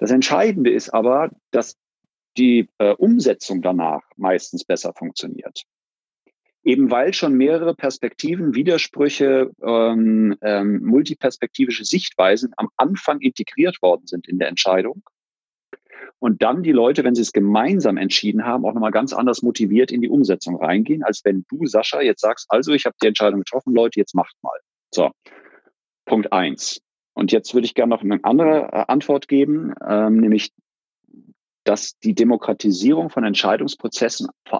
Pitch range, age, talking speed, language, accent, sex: 110-140 Hz, 40-59, 150 wpm, German, German, male